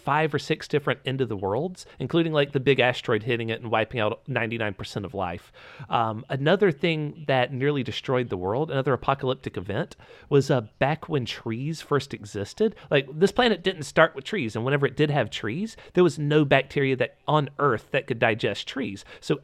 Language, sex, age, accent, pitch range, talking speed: English, male, 30-49, American, 120-150 Hz, 200 wpm